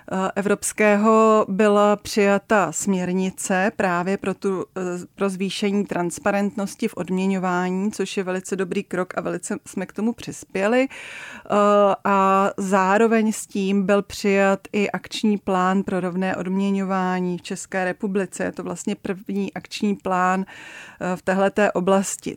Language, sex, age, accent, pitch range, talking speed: Czech, female, 30-49, native, 185-205 Hz, 125 wpm